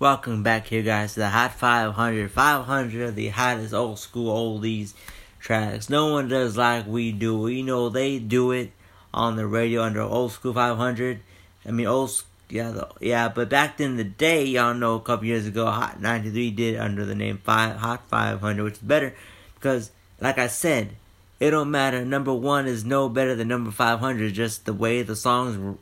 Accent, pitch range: American, 105-130 Hz